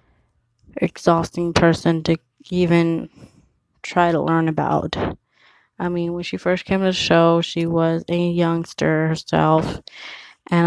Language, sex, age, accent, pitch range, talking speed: English, female, 20-39, American, 160-175 Hz, 130 wpm